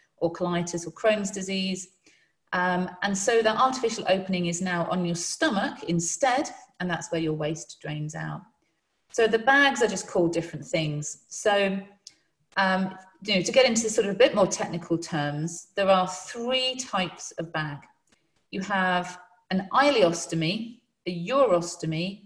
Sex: female